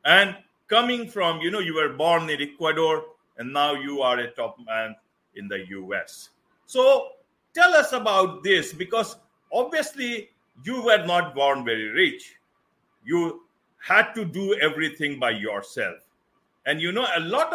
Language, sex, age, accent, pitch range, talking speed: English, male, 50-69, Indian, 155-240 Hz, 155 wpm